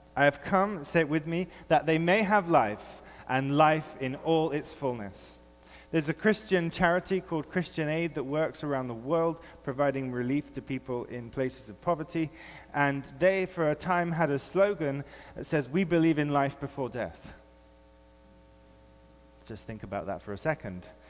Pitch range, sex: 115-170 Hz, male